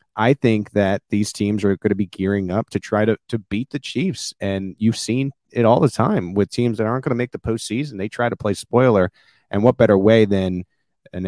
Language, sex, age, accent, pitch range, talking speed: English, male, 30-49, American, 100-120 Hz, 240 wpm